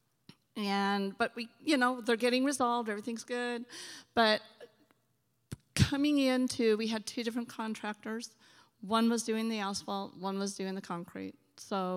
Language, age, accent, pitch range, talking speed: English, 40-59, American, 175-225 Hz, 145 wpm